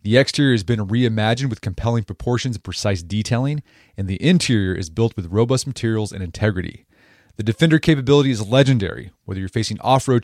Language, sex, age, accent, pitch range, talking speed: English, male, 30-49, American, 105-135 Hz, 175 wpm